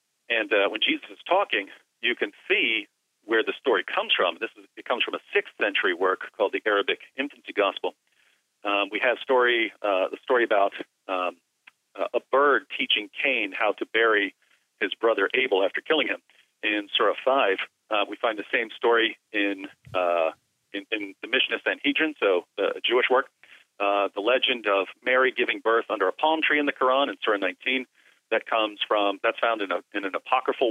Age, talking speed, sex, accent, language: 40-59, 195 wpm, male, American, English